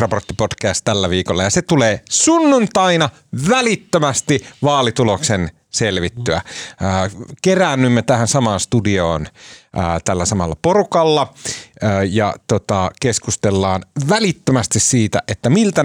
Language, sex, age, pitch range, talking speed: Finnish, male, 30-49, 95-135 Hz, 90 wpm